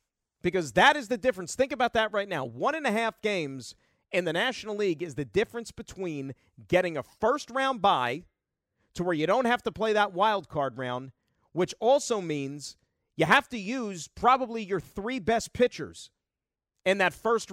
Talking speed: 185 wpm